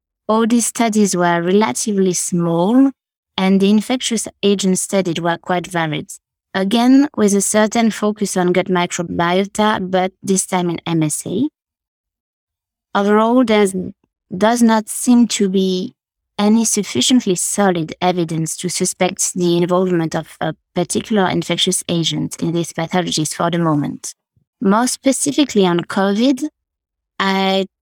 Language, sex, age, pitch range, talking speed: English, female, 20-39, 175-215 Hz, 125 wpm